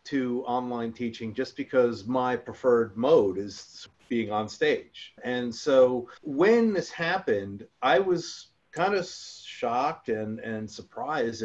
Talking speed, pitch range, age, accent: 130 wpm, 115-165 Hz, 40-59, American